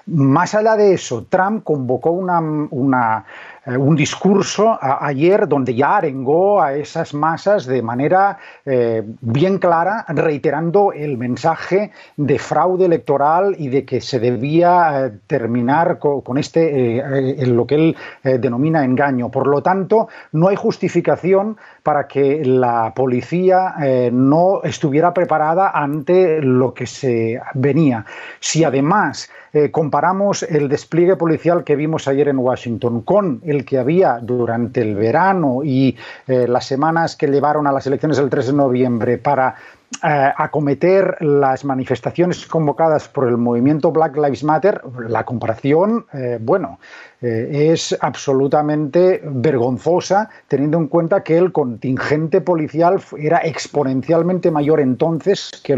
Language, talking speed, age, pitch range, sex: Spanish, 135 wpm, 40-59, 130-175 Hz, male